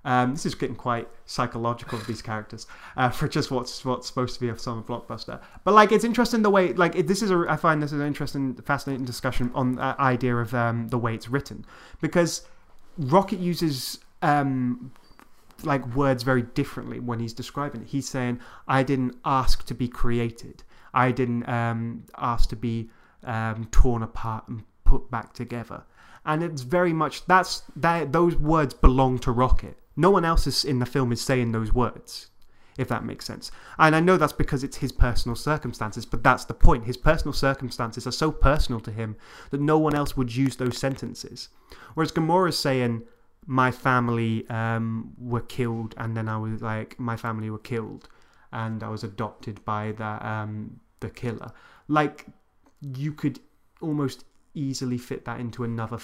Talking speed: 185 wpm